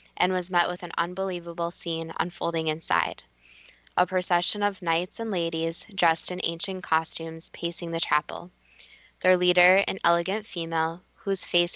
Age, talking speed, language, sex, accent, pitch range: 10-29, 150 wpm, English, female, American, 160-185 Hz